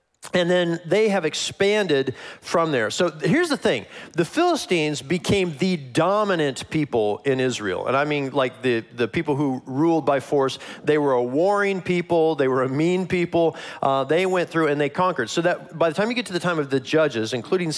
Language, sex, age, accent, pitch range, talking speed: English, male, 40-59, American, 135-180 Hz, 205 wpm